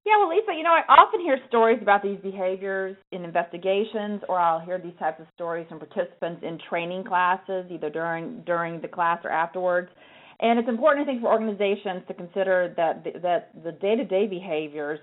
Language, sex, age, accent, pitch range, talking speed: English, female, 40-59, American, 150-185 Hz, 190 wpm